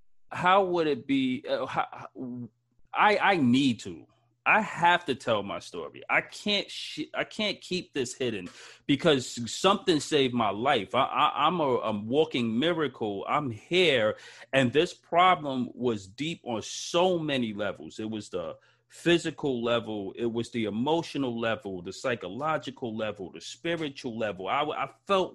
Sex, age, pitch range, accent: male, 30-49, 110-155 Hz, American